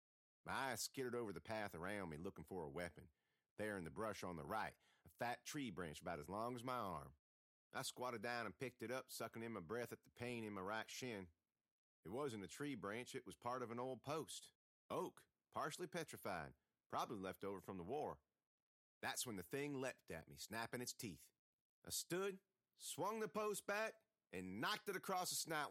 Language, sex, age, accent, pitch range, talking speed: English, male, 40-59, American, 100-155 Hz, 210 wpm